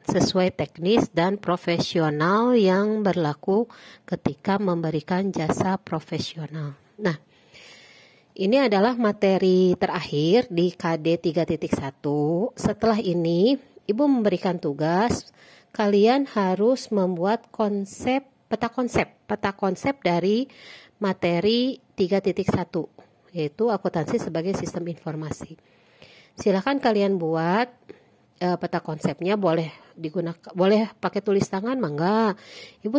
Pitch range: 170-215 Hz